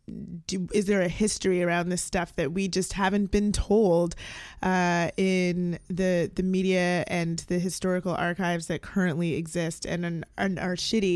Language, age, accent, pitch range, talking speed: English, 20-39, American, 175-195 Hz, 165 wpm